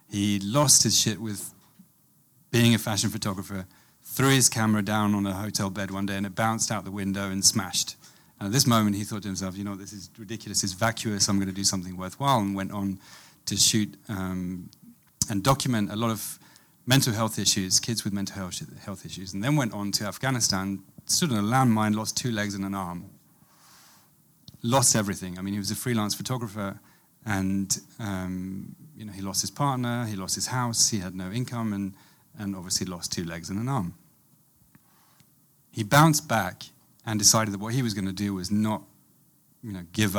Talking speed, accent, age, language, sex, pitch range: 200 wpm, British, 30-49, English, male, 95-115 Hz